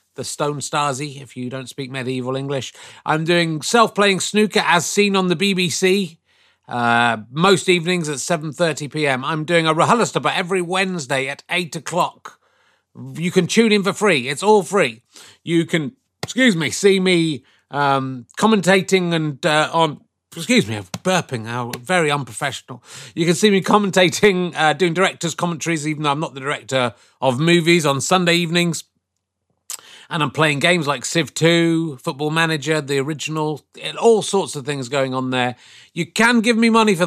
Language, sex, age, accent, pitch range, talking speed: English, male, 30-49, British, 130-175 Hz, 170 wpm